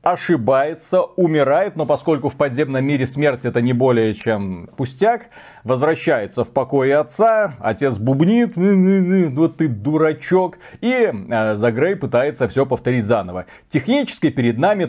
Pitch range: 125-170 Hz